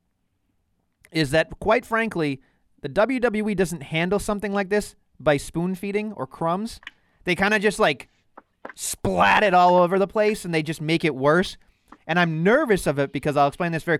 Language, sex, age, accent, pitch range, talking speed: English, male, 30-49, American, 150-200 Hz, 180 wpm